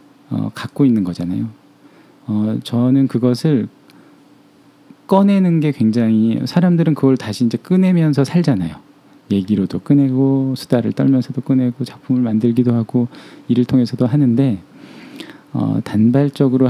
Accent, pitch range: native, 110-140 Hz